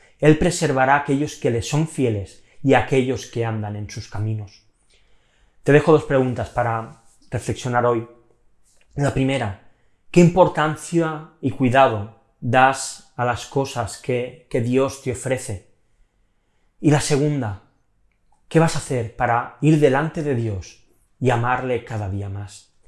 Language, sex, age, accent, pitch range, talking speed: Spanish, male, 30-49, Spanish, 115-150 Hz, 145 wpm